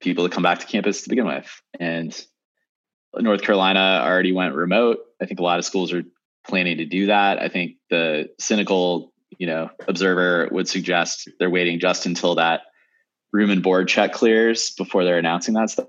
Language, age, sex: English, 20-39, male